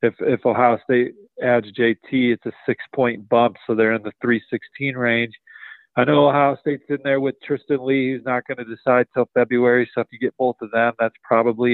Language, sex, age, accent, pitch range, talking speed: English, male, 40-59, American, 115-130 Hz, 210 wpm